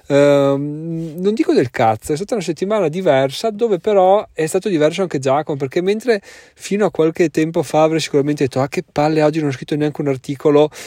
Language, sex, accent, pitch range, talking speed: Italian, male, native, 135-160 Hz, 200 wpm